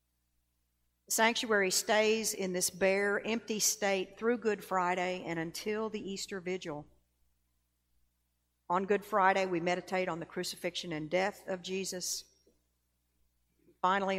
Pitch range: 150-200 Hz